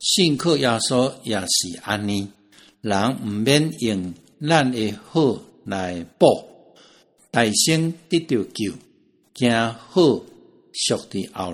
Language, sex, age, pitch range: Chinese, male, 60-79, 100-135 Hz